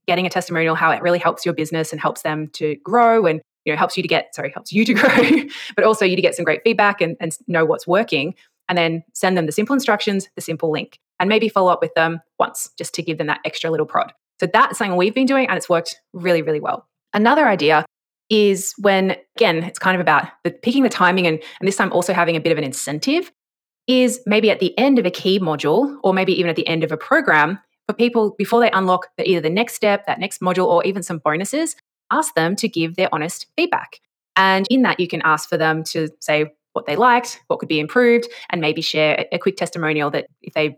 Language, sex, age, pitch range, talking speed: English, female, 20-39, 160-220 Hz, 245 wpm